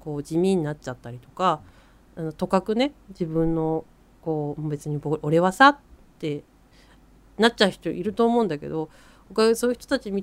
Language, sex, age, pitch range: Japanese, female, 40-59, 155-230 Hz